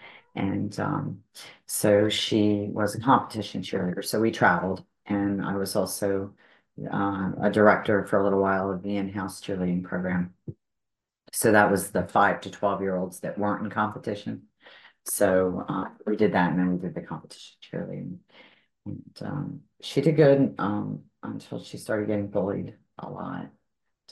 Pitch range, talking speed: 95-105 Hz, 160 wpm